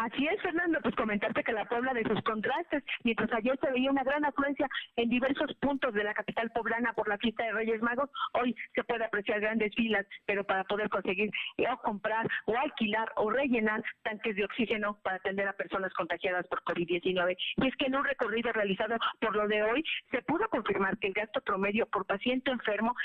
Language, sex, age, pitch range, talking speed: Spanish, female, 40-59, 205-250 Hz, 205 wpm